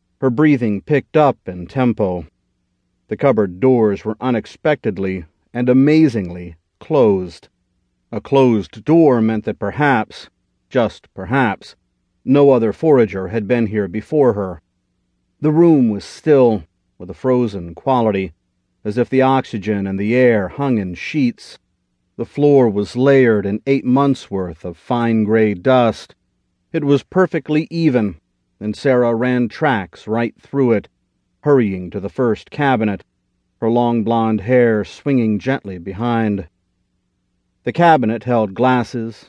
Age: 40-59